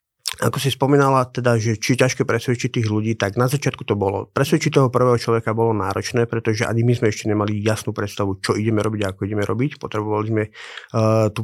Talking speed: 210 wpm